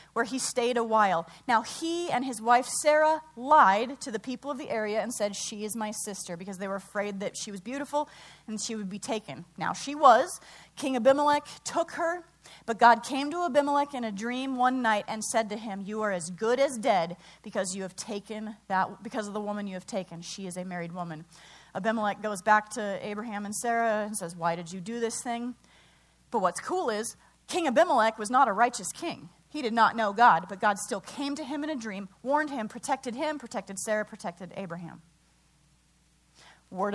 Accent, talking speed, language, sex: American, 205 wpm, English, female